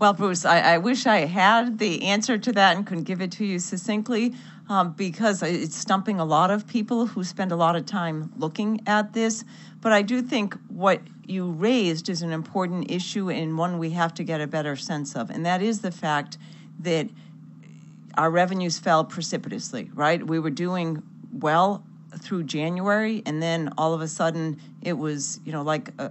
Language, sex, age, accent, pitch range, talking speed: English, female, 40-59, American, 160-200 Hz, 195 wpm